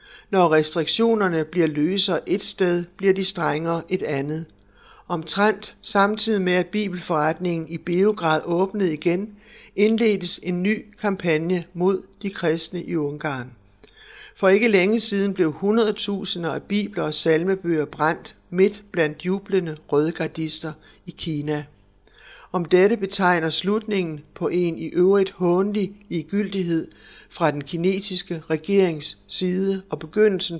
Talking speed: 125 wpm